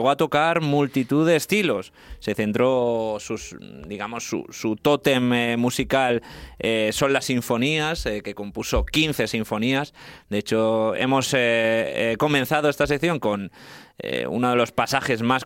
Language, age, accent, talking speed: Spanish, 20-39, Spanish, 145 wpm